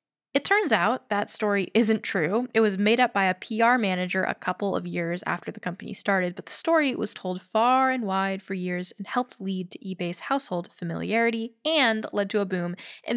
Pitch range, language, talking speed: 185-235 Hz, English, 210 wpm